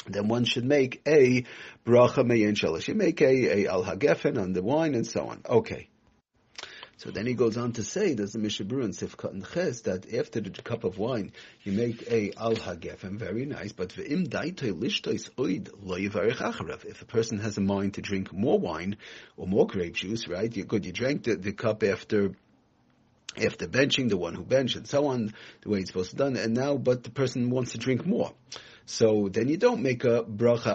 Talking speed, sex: 200 wpm, male